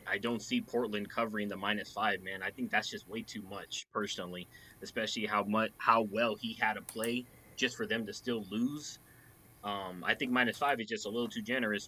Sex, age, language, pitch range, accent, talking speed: male, 20-39, English, 105-120 Hz, American, 215 wpm